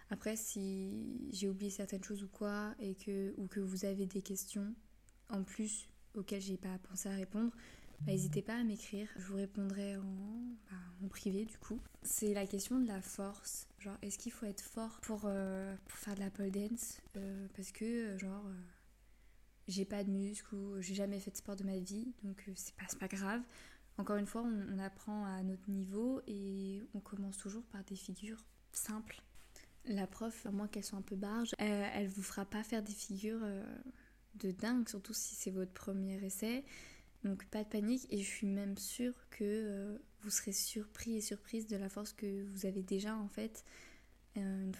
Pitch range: 195-215 Hz